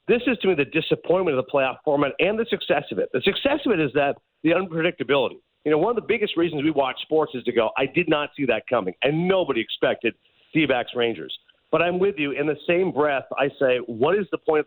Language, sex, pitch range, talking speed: English, male, 130-180 Hz, 255 wpm